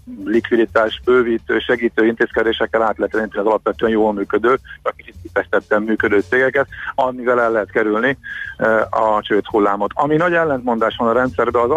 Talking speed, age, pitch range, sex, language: 140 wpm, 50-69, 110-130 Hz, male, Hungarian